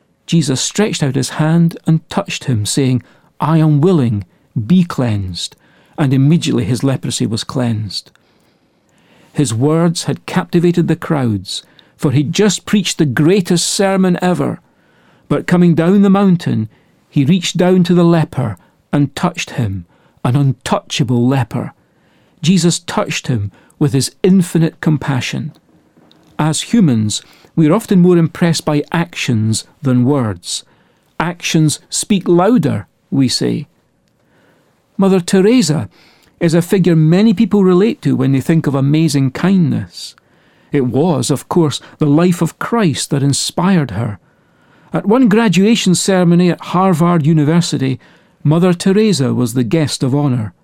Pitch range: 135-180 Hz